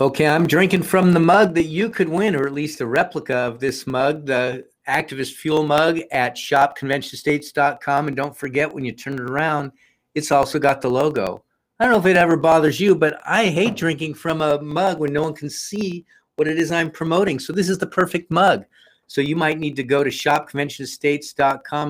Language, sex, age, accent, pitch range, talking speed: English, male, 50-69, American, 120-155 Hz, 210 wpm